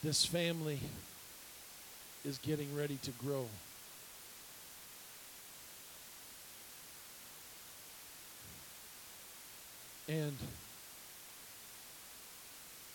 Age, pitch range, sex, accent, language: 50-69, 130-155 Hz, male, American, English